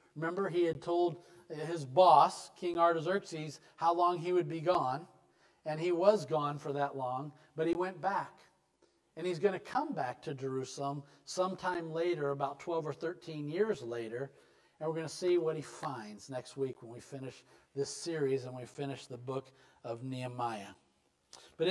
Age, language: 50-69, English